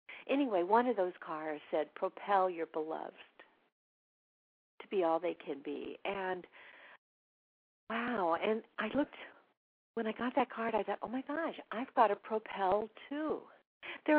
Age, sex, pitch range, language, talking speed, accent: 50-69, female, 160-245 Hz, English, 150 wpm, American